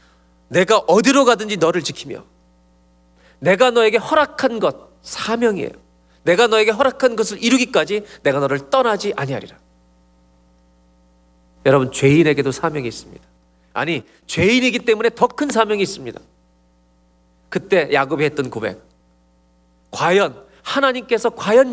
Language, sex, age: Korean, male, 40-59